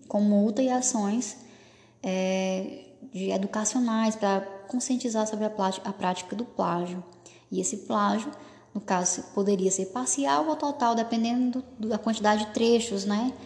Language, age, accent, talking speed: Portuguese, 10-29, Brazilian, 150 wpm